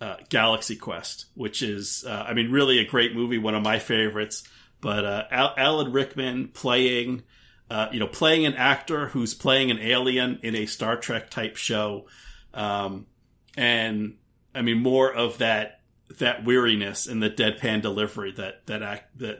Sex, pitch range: male, 110-130 Hz